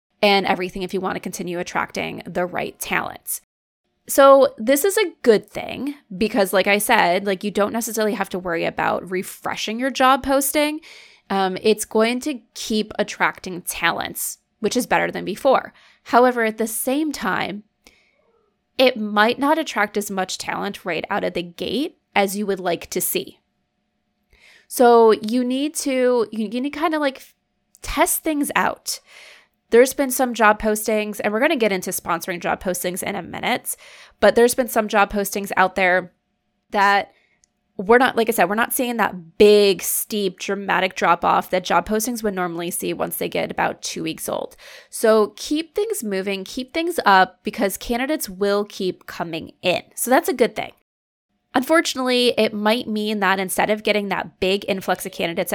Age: 20-39